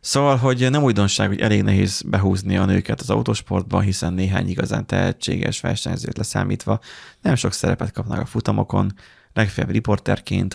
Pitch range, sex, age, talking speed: 100-120 Hz, male, 30-49, 150 wpm